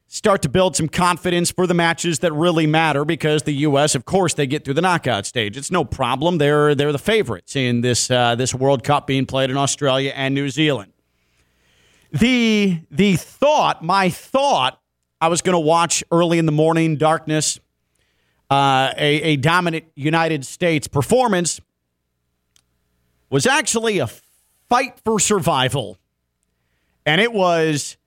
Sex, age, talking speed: male, 40-59, 155 wpm